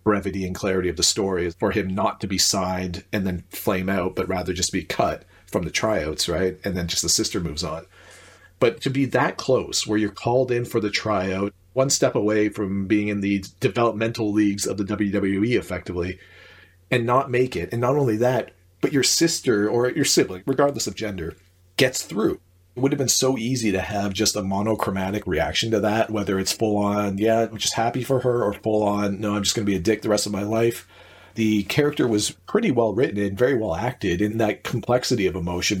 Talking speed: 220 wpm